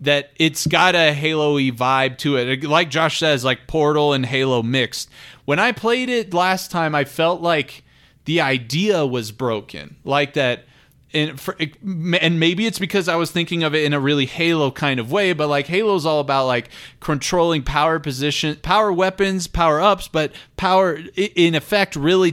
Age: 20-39